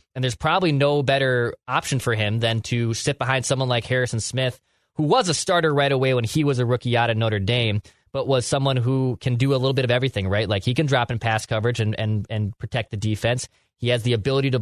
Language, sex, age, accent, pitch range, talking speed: English, male, 20-39, American, 115-130 Hz, 245 wpm